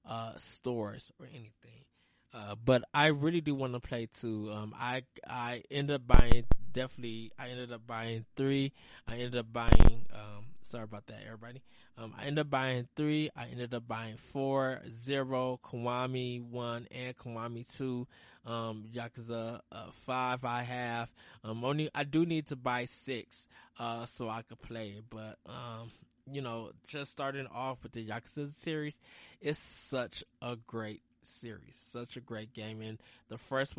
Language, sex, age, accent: English, male, 20-39, American